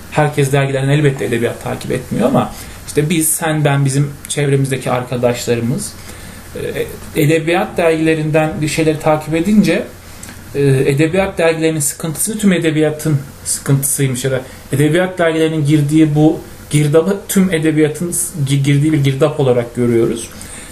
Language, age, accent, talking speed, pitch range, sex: Turkish, 40-59, native, 110 wpm, 125-160 Hz, male